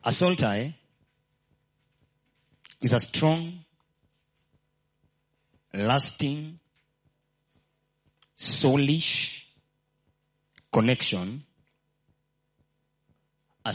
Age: 40-59